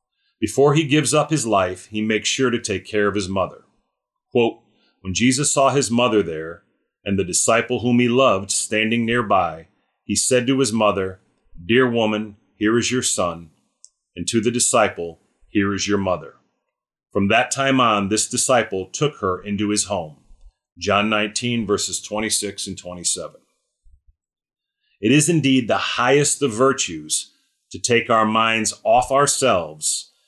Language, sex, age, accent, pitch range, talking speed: English, male, 40-59, American, 100-130 Hz, 155 wpm